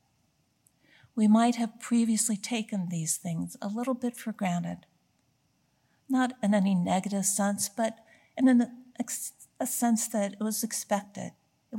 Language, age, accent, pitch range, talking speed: English, 60-79, American, 180-225 Hz, 130 wpm